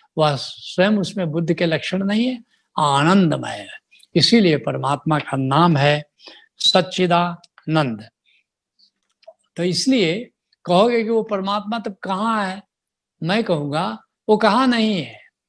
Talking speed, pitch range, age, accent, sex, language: 95 wpm, 165-205 Hz, 70-89, native, male, Hindi